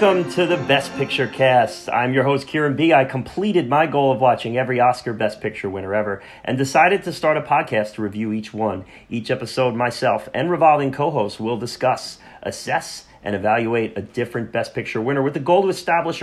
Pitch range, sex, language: 115-155 Hz, male, English